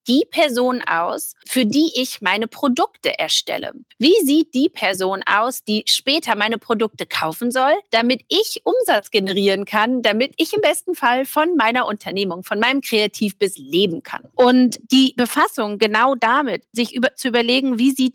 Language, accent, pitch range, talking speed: German, German, 215-300 Hz, 160 wpm